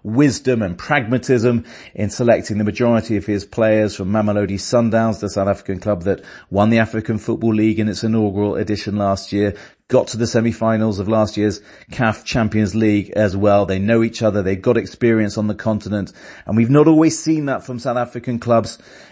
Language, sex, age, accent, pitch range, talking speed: English, male, 30-49, British, 100-115 Hz, 190 wpm